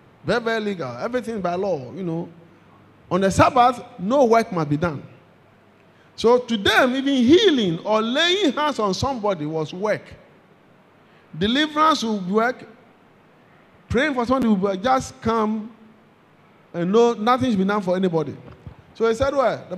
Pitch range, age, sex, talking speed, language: 185-255 Hz, 20-39, male, 150 wpm, English